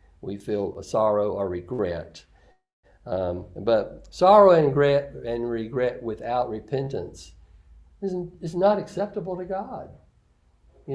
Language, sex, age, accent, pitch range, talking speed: English, male, 60-79, American, 100-135 Hz, 115 wpm